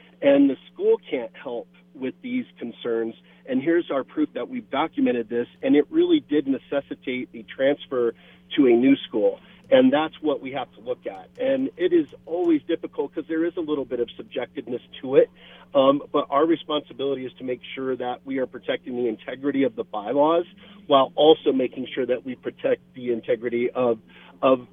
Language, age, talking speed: English, 40-59, 190 wpm